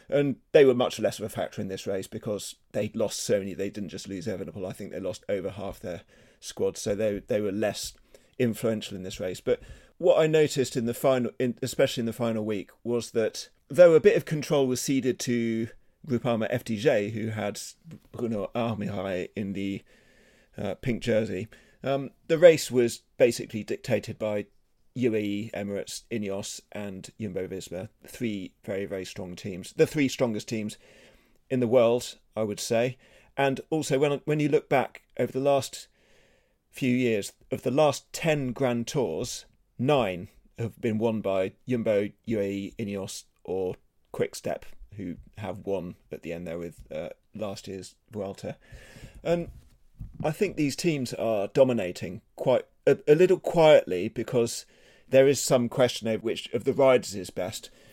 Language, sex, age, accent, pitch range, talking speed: English, male, 30-49, British, 100-130 Hz, 170 wpm